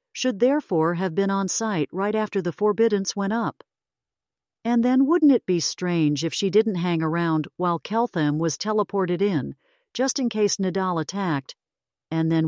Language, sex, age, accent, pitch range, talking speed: English, female, 50-69, American, 150-200 Hz, 170 wpm